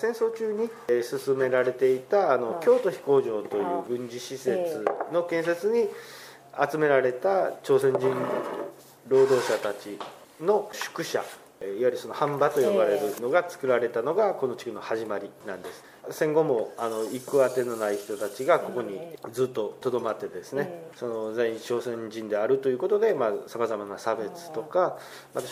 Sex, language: male, Japanese